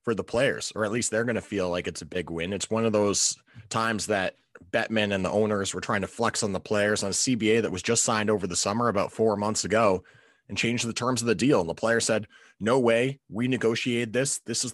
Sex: male